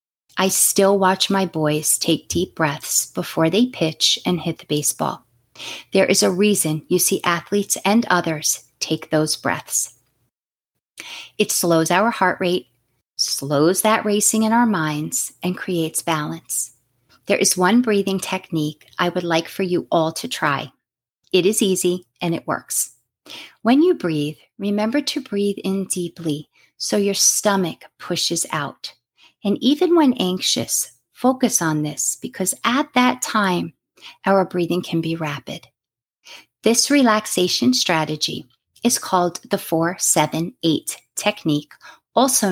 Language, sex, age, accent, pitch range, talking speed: English, female, 40-59, American, 160-215 Hz, 140 wpm